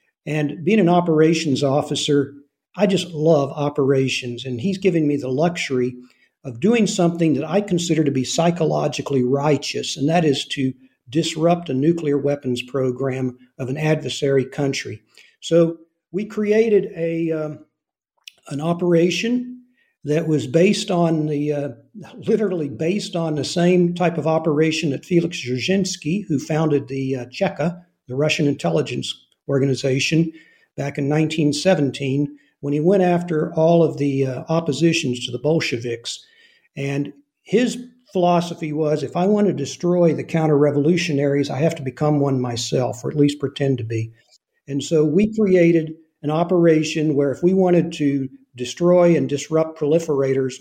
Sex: male